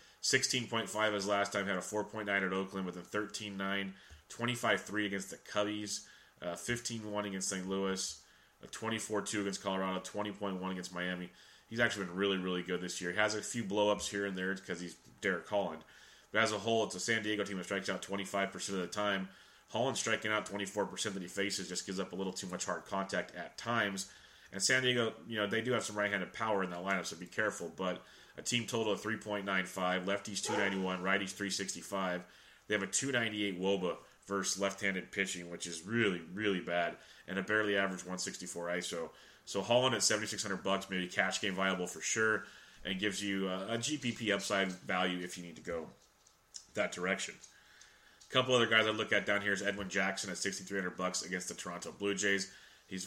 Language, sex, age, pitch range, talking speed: English, male, 30-49, 95-105 Hz, 195 wpm